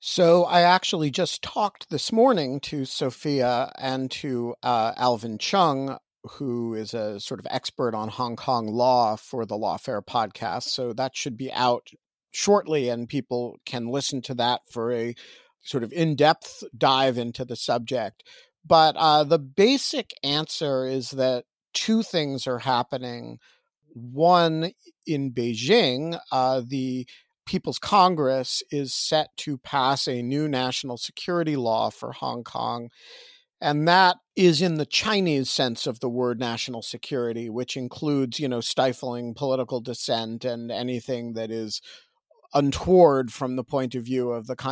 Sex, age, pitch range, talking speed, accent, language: male, 50-69, 125-165 Hz, 150 wpm, American, English